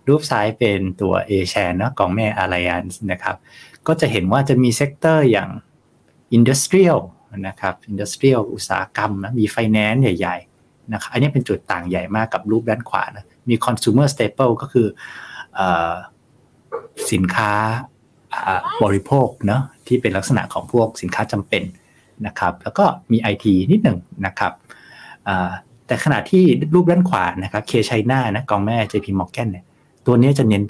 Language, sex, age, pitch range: Thai, male, 60-79, 100-135 Hz